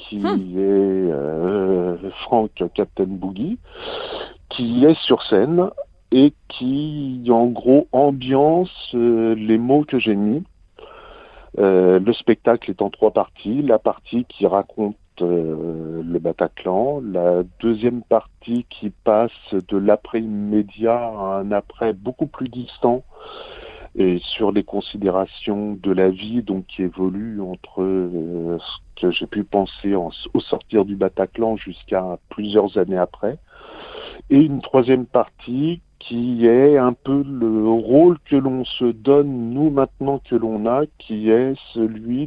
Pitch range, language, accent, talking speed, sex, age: 100-135 Hz, French, French, 135 wpm, male, 50-69